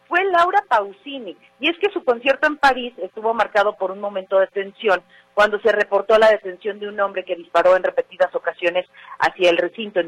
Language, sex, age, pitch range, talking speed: Spanish, female, 40-59, 200-255 Hz, 200 wpm